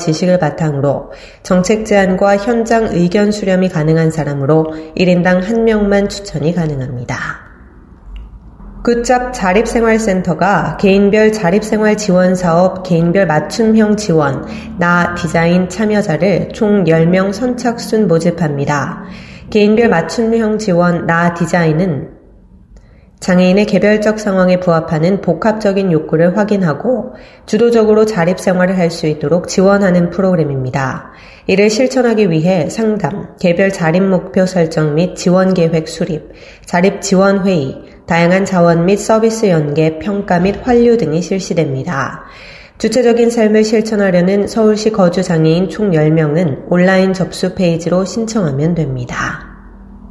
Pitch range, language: 165-210 Hz, Korean